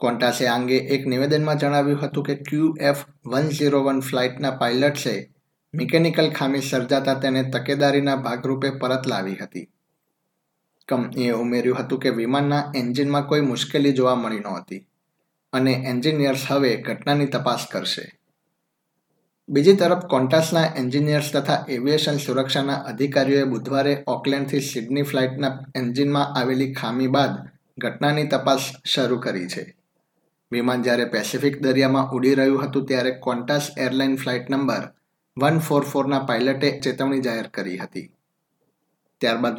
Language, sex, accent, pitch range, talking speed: Gujarati, male, native, 130-145 Hz, 120 wpm